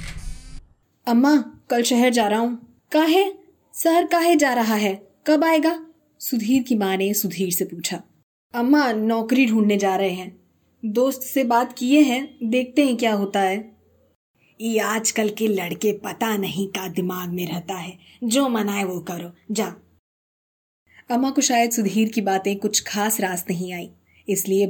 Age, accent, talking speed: 20-39, native, 160 wpm